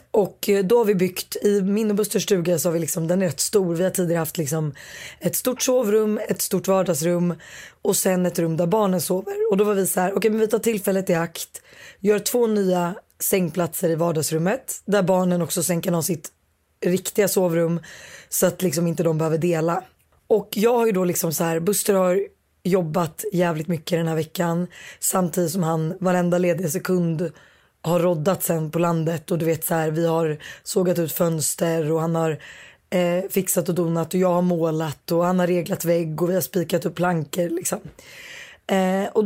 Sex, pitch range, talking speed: female, 170-195 Hz, 200 wpm